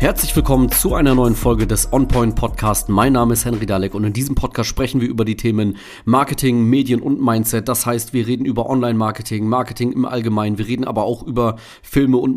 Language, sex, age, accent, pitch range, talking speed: German, male, 40-59, German, 110-130 Hz, 210 wpm